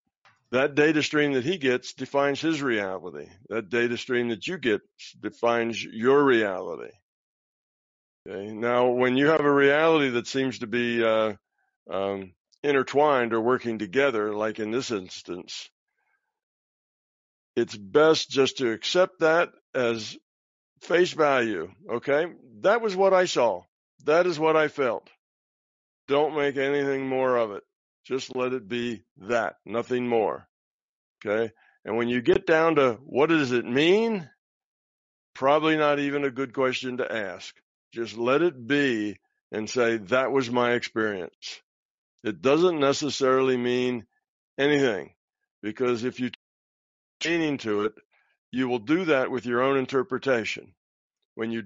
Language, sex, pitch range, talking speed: English, male, 115-145 Hz, 145 wpm